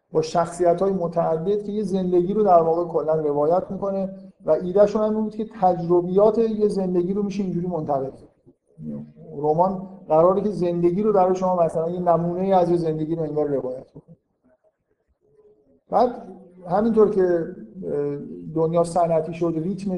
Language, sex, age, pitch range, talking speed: Persian, male, 50-69, 160-200 Hz, 145 wpm